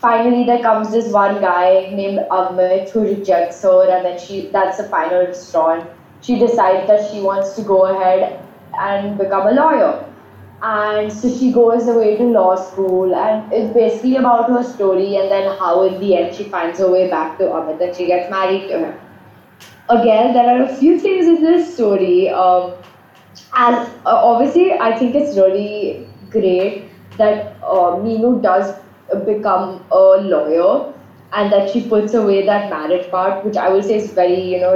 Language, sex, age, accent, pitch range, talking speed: English, female, 20-39, Indian, 185-230 Hz, 180 wpm